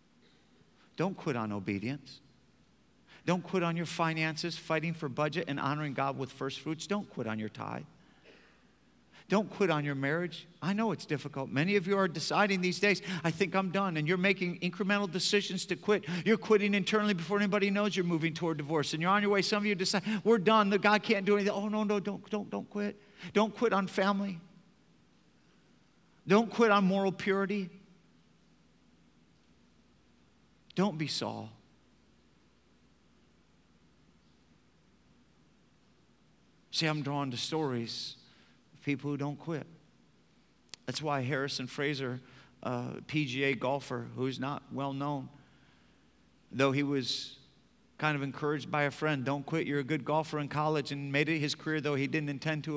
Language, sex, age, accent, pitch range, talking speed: English, male, 50-69, American, 140-195 Hz, 160 wpm